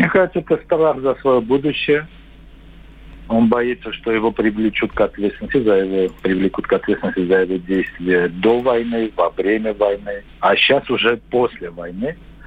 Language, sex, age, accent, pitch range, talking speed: Russian, male, 50-69, native, 110-140 Hz, 155 wpm